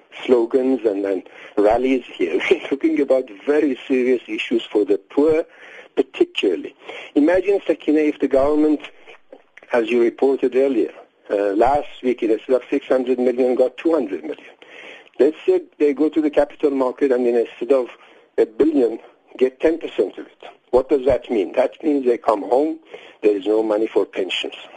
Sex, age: male, 60-79